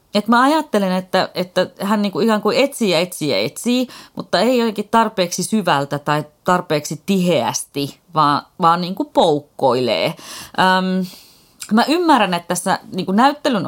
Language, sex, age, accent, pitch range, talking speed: Finnish, female, 30-49, native, 160-235 Hz, 140 wpm